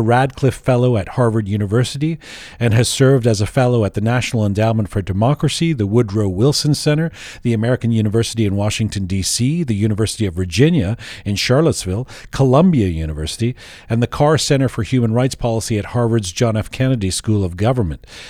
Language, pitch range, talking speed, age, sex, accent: English, 105-130 Hz, 165 wpm, 40-59, male, American